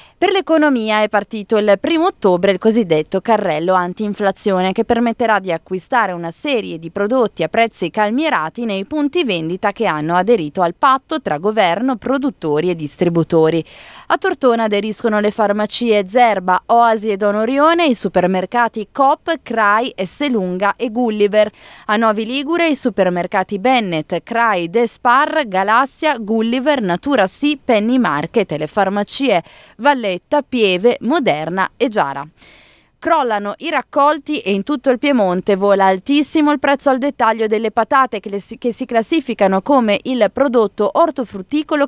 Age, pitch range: 20-39, 195-265 Hz